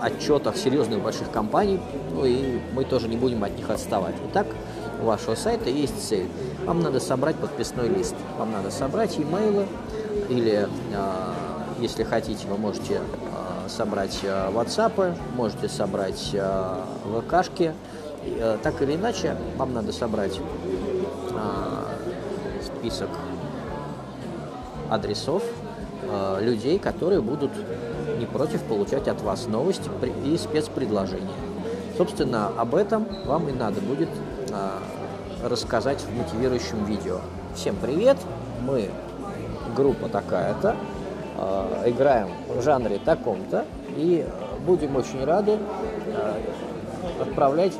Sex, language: male, Russian